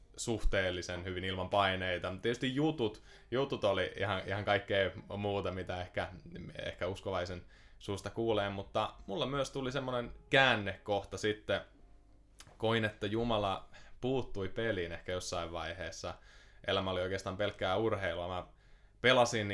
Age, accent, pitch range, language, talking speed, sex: 20-39, native, 90-105 Hz, Finnish, 125 wpm, male